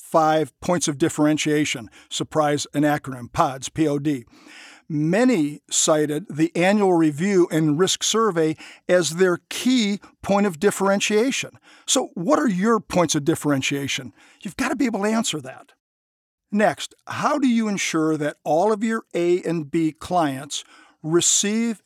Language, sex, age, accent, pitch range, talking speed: English, male, 50-69, American, 155-215 Hz, 145 wpm